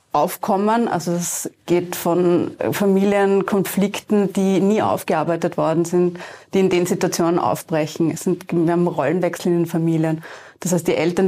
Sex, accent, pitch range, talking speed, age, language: female, German, 175-195 Hz, 150 wpm, 30-49, German